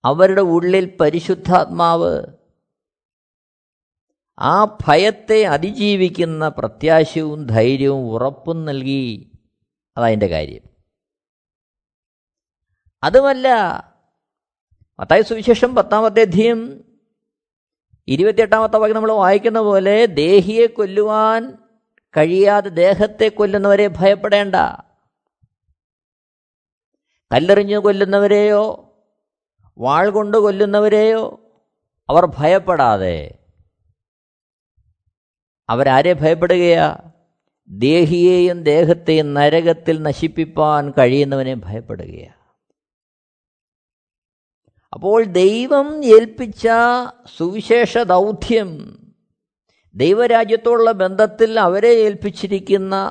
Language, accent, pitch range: Malayalam, native, 145-215 Hz